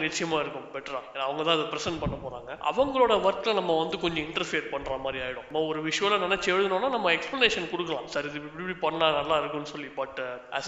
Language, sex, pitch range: Thai, male, 150-180 Hz